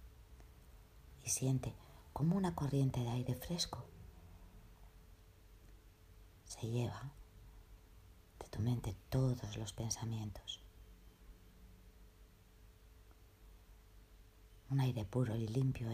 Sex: female